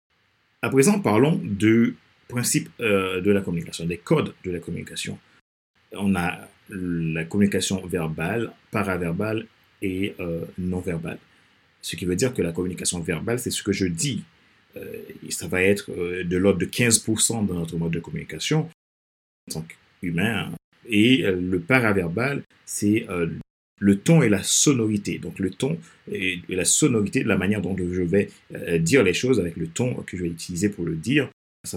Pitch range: 85-110 Hz